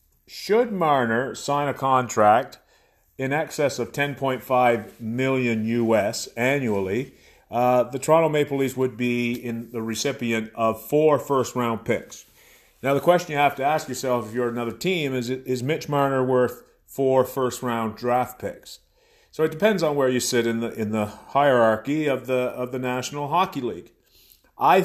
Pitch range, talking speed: 115-140 Hz, 165 wpm